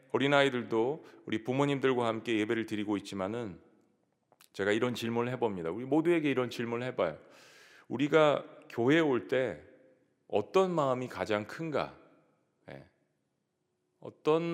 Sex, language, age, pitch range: male, Korean, 40-59, 110-145 Hz